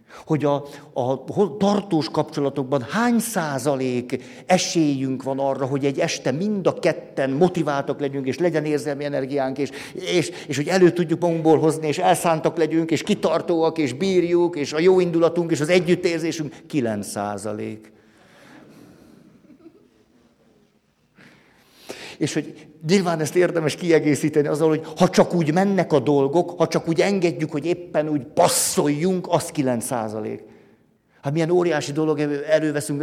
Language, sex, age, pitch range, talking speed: Hungarian, male, 50-69, 135-165 Hz, 140 wpm